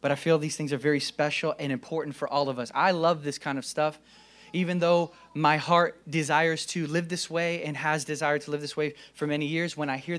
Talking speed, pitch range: 245 wpm, 155-210 Hz